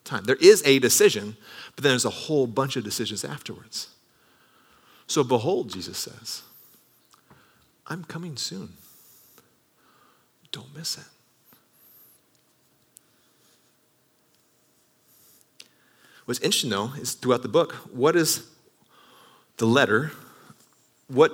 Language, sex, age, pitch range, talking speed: English, male, 40-59, 120-165 Hz, 100 wpm